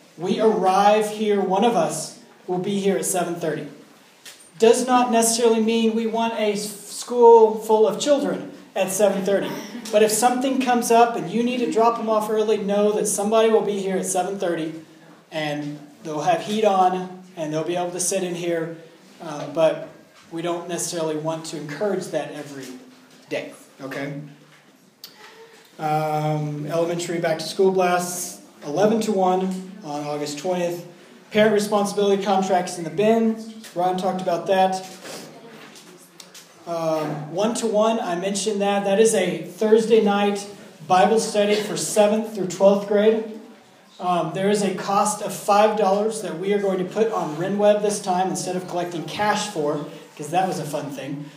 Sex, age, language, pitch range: male, 40-59, English, 175-215 Hz